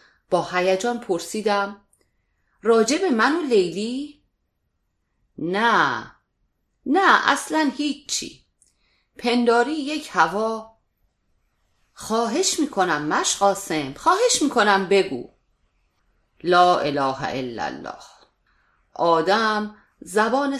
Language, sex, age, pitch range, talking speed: Persian, female, 40-59, 170-255 Hz, 80 wpm